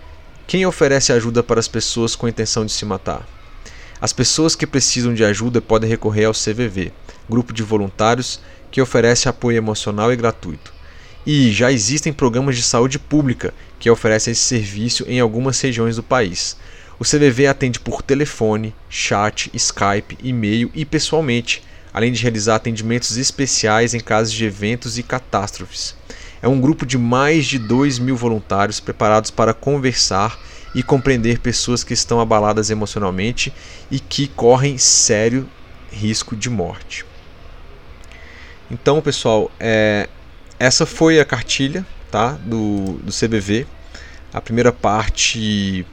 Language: Portuguese